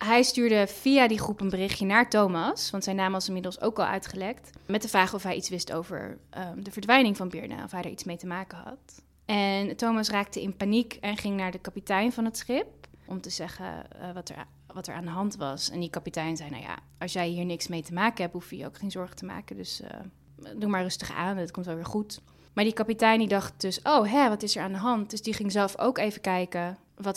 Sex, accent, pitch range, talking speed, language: female, Dutch, 180-210 Hz, 260 wpm, Dutch